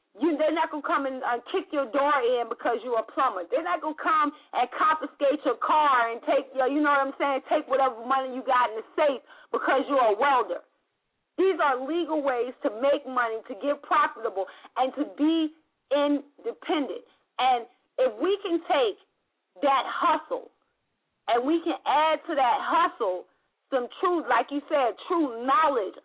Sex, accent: female, American